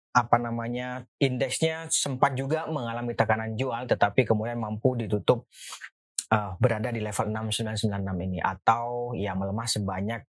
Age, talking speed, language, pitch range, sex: 30-49, 135 wpm, Indonesian, 110-145 Hz, male